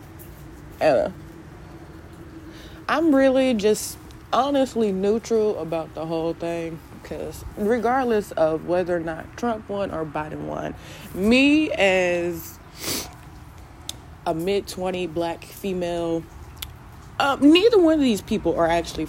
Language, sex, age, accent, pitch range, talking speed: English, female, 20-39, American, 155-215 Hz, 110 wpm